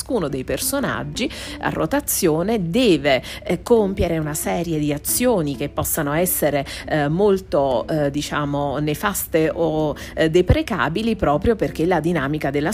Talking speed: 130 wpm